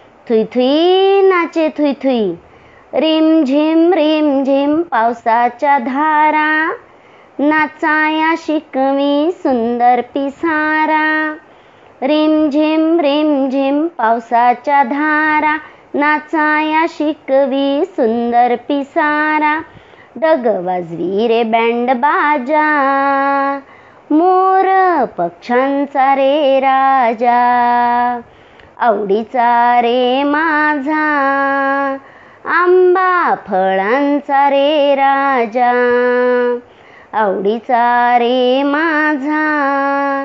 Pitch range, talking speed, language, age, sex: 245-310 Hz, 65 wpm, Marathi, 40-59, male